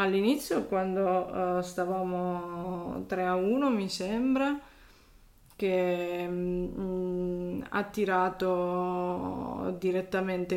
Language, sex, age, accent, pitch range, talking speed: Italian, female, 20-39, native, 180-205 Hz, 70 wpm